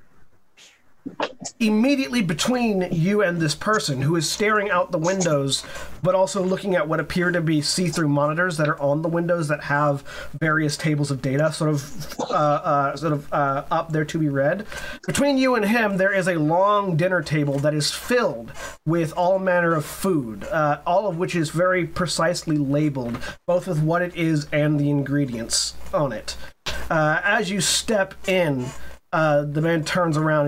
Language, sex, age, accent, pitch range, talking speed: English, male, 30-49, American, 145-175 Hz, 180 wpm